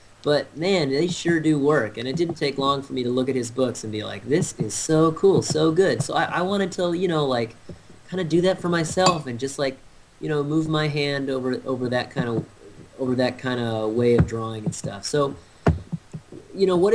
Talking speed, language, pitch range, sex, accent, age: 235 wpm, English, 115-155 Hz, male, American, 30-49